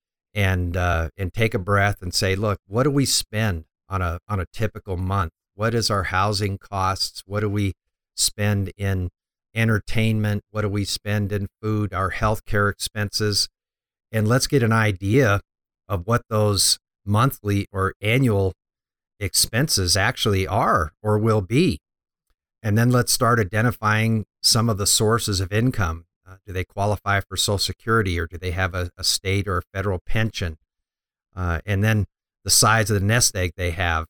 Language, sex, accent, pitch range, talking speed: English, male, American, 95-110 Hz, 165 wpm